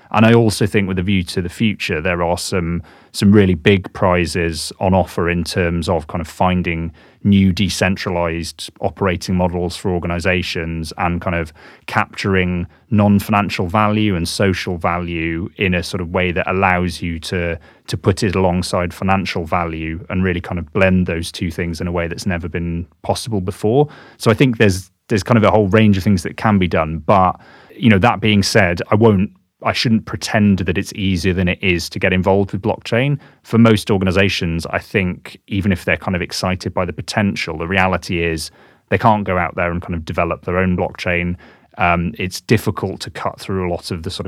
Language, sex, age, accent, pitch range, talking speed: English, male, 30-49, British, 85-100 Hz, 200 wpm